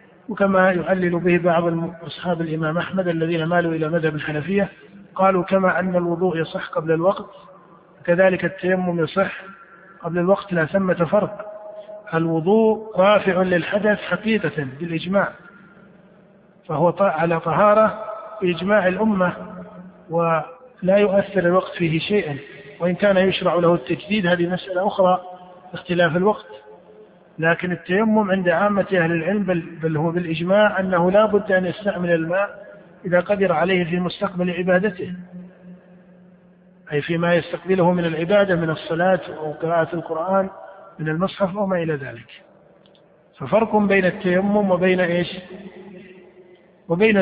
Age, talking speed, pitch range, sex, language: 50-69, 120 wpm, 170-195 Hz, male, Arabic